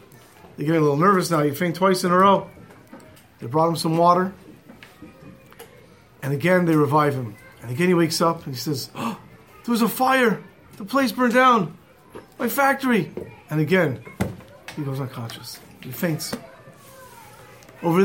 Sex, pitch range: male, 150-220 Hz